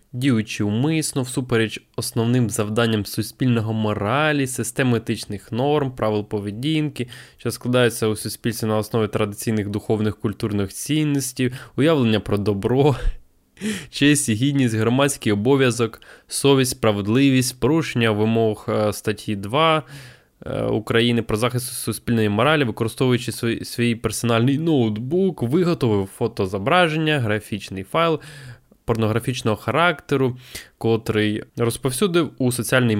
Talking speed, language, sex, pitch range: 100 wpm, Ukrainian, male, 110-135 Hz